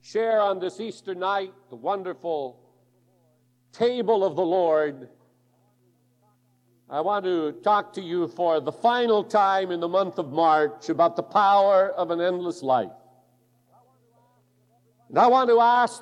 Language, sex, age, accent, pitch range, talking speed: English, male, 50-69, American, 125-195 Hz, 140 wpm